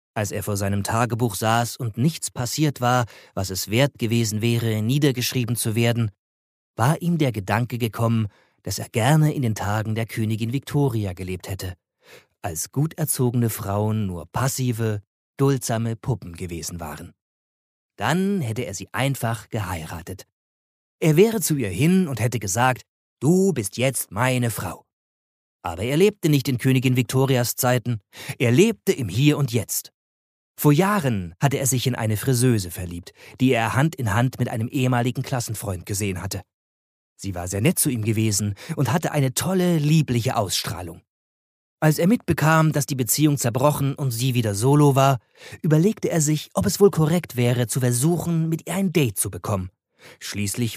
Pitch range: 100-140 Hz